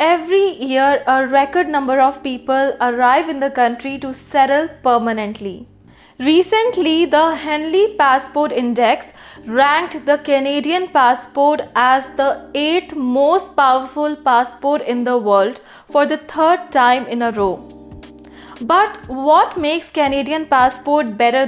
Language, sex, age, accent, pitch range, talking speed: English, female, 20-39, Indian, 255-310 Hz, 125 wpm